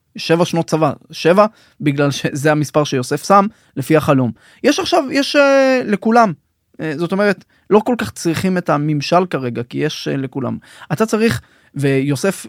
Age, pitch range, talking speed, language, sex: 20-39, 140-185 Hz, 160 wpm, Hebrew, male